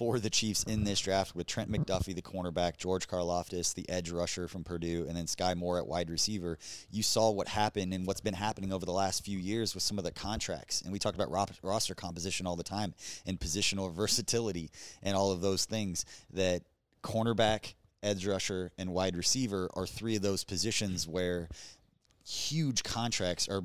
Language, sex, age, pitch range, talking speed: English, male, 20-39, 90-105 Hz, 195 wpm